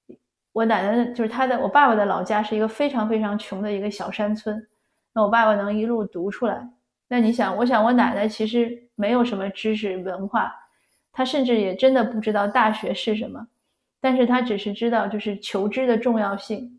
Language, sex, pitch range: Chinese, female, 205-245 Hz